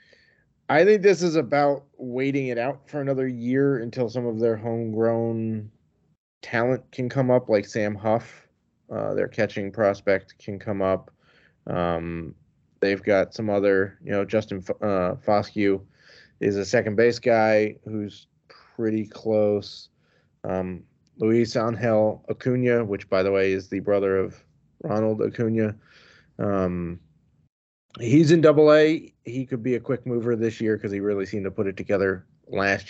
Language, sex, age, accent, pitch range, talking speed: English, male, 30-49, American, 100-125 Hz, 155 wpm